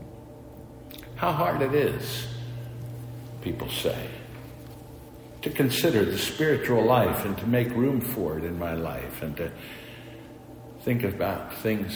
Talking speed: 125 wpm